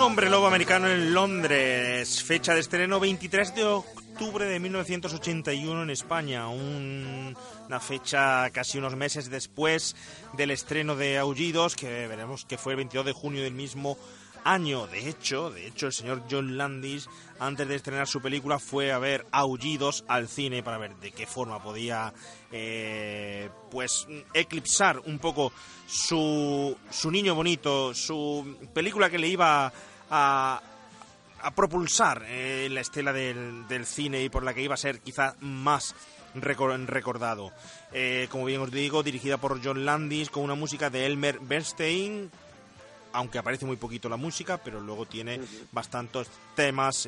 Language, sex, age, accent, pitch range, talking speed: Spanish, male, 30-49, Spanish, 125-155 Hz, 155 wpm